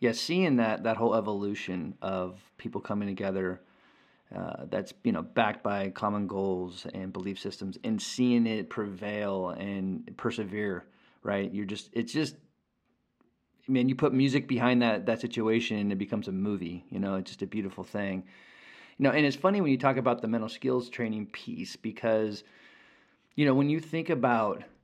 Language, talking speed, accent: English, 180 wpm, American